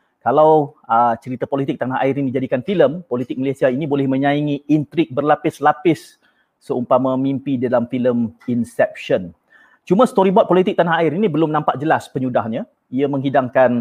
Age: 30-49